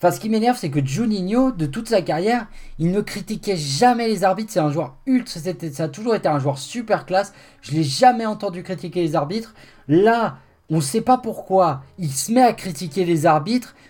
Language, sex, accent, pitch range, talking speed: French, male, French, 165-245 Hz, 210 wpm